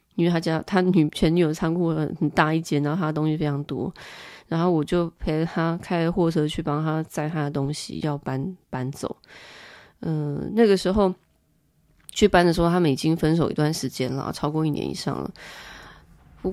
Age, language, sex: 20-39, Chinese, female